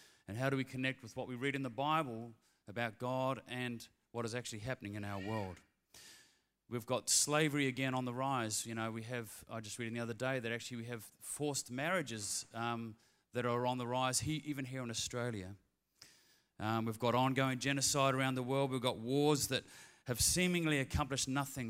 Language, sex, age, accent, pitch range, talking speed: English, male, 30-49, Australian, 110-130 Hz, 195 wpm